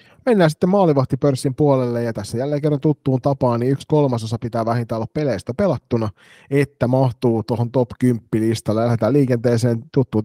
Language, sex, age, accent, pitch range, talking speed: Finnish, male, 30-49, native, 115-135 Hz, 150 wpm